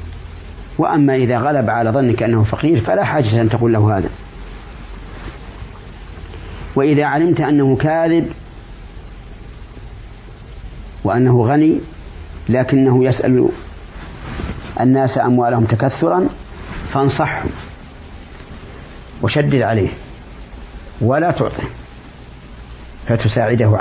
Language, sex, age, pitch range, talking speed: Arabic, male, 50-69, 85-135 Hz, 75 wpm